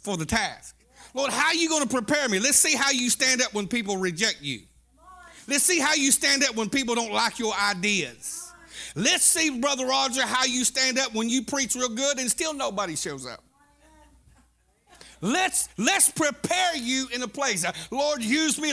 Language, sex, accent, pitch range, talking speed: English, male, American, 220-280 Hz, 195 wpm